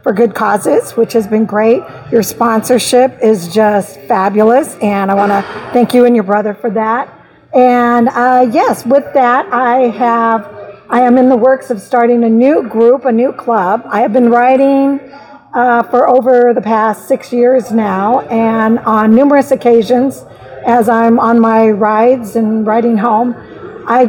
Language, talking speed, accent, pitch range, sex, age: English, 170 wpm, American, 225-255 Hz, female, 50-69